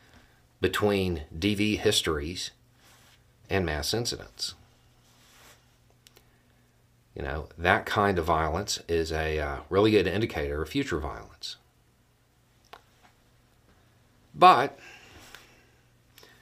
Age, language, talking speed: 50-69, English, 80 wpm